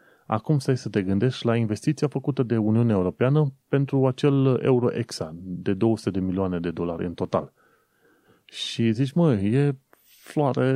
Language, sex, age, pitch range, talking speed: Romanian, male, 30-49, 90-125 Hz, 150 wpm